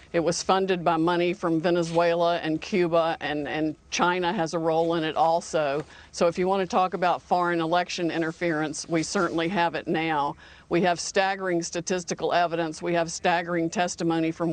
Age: 50-69